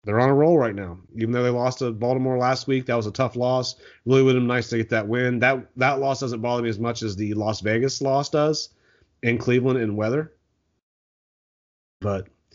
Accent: American